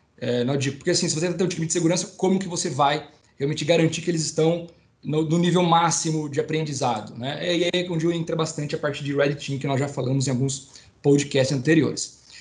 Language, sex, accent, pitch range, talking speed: Portuguese, male, Brazilian, 140-180 Hz, 230 wpm